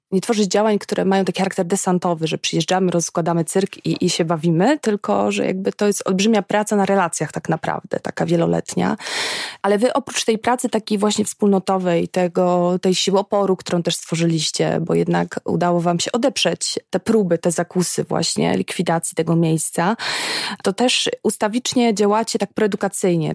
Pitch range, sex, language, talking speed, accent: 175-210 Hz, female, Polish, 165 wpm, native